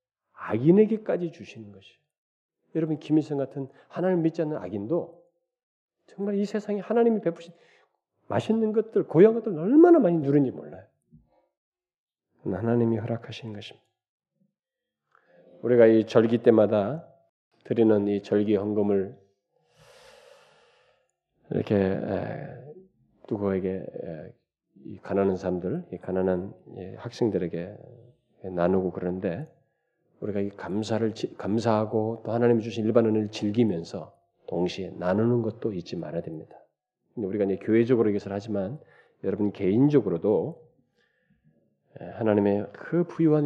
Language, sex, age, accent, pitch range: Korean, male, 40-59, native, 100-160 Hz